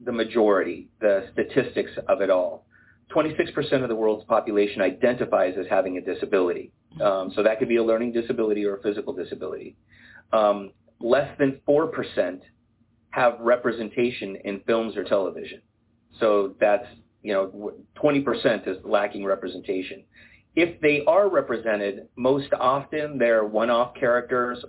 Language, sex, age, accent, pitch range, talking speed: English, male, 40-59, American, 110-140 Hz, 135 wpm